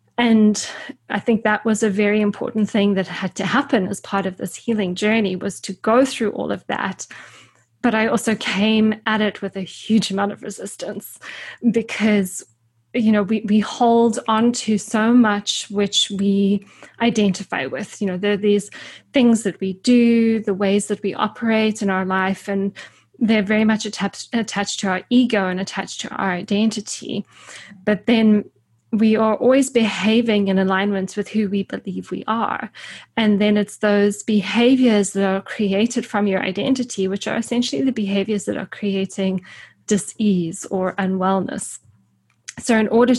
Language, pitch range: English, 195-225 Hz